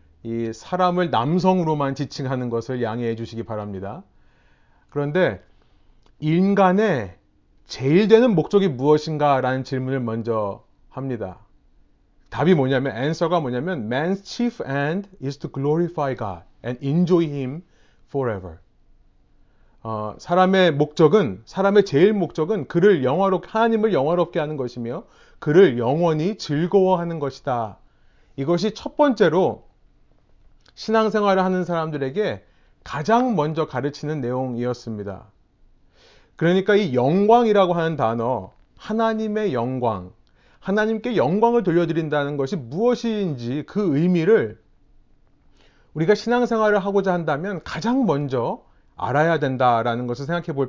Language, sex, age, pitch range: Korean, male, 30-49, 125-190 Hz